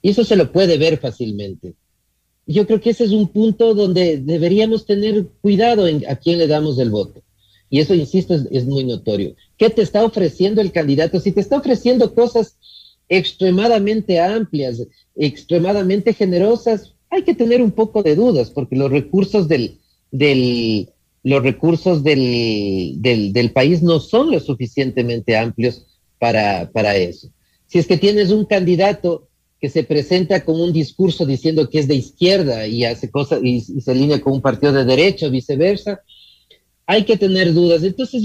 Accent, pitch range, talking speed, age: Mexican, 125-195 Hz, 170 wpm, 40-59